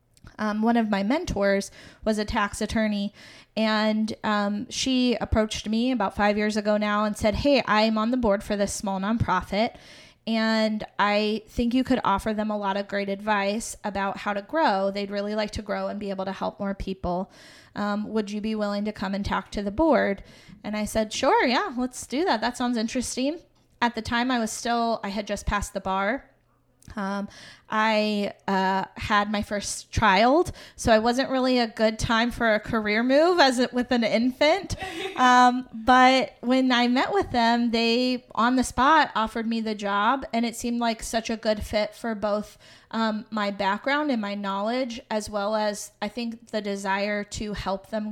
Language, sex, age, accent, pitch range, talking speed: English, female, 20-39, American, 205-240 Hz, 195 wpm